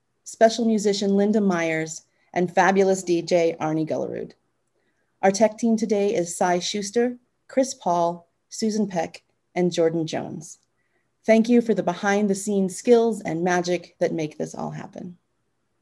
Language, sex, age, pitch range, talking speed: English, female, 30-49, 180-225 Hz, 145 wpm